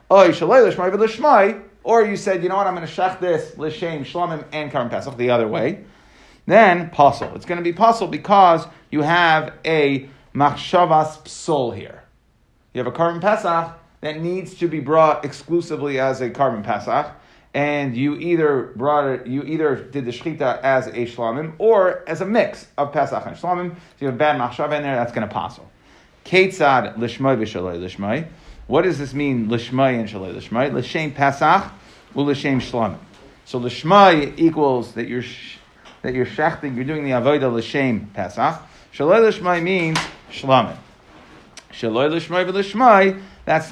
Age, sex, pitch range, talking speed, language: 30-49, male, 130-175 Hz, 160 wpm, English